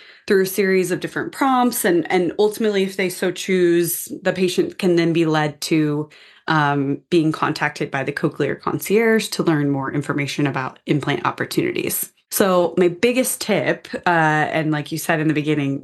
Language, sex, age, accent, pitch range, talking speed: English, female, 20-39, American, 155-190 Hz, 175 wpm